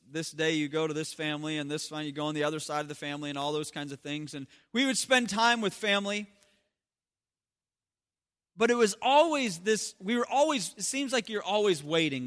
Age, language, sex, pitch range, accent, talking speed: 30-49, English, male, 190-240 Hz, American, 225 wpm